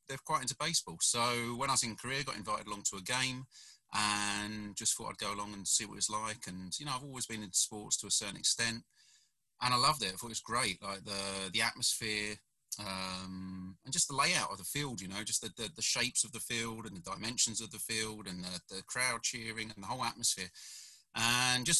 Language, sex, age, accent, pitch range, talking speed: English, male, 30-49, British, 105-135 Hz, 245 wpm